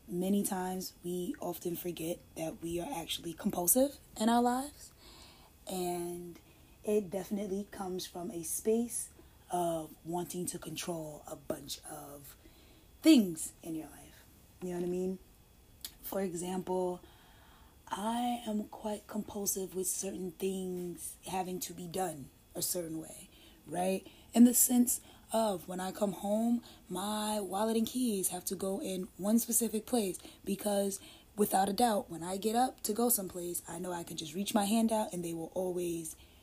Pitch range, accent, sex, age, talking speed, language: 175-215 Hz, American, female, 20-39, 160 wpm, English